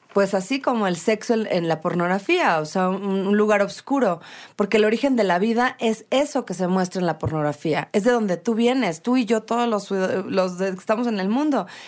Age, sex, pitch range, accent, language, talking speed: 30-49, female, 190-230 Hz, Mexican, Spanish, 215 wpm